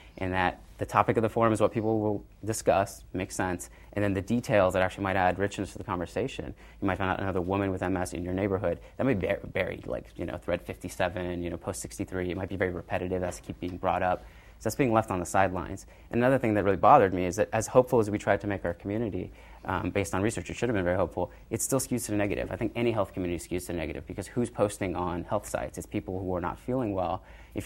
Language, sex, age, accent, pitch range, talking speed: English, male, 30-49, American, 90-100 Hz, 265 wpm